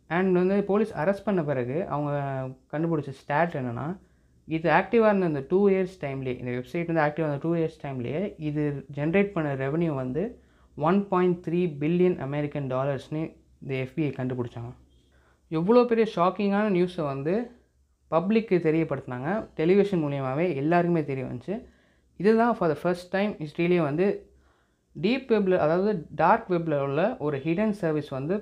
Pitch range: 145-185 Hz